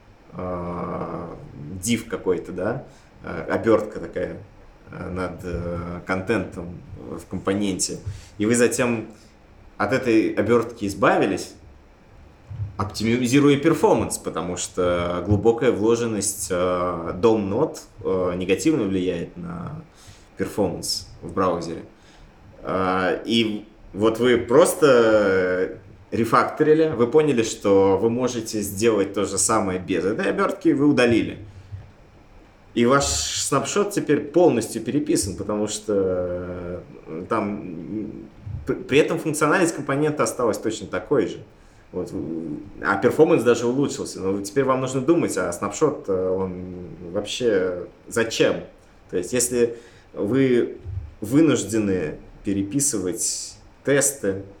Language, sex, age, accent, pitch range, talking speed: Russian, male, 20-39, native, 95-120 Hz, 95 wpm